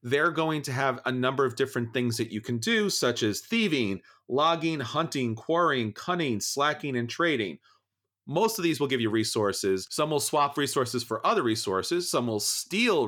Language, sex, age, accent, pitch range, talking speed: English, male, 40-59, American, 115-150 Hz, 185 wpm